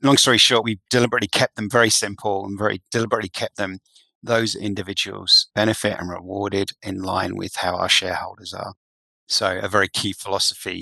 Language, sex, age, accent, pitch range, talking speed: English, male, 30-49, British, 95-110 Hz, 170 wpm